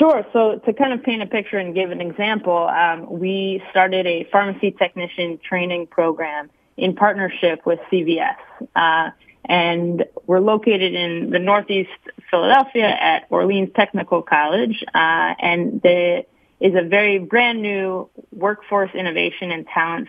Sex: female